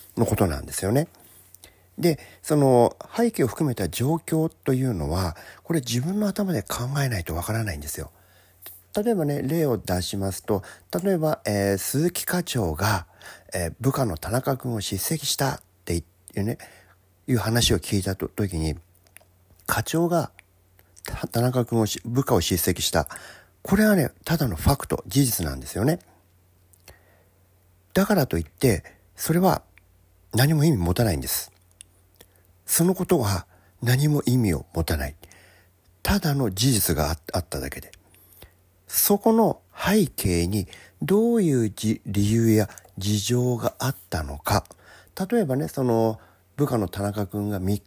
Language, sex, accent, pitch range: Japanese, male, native, 90-135 Hz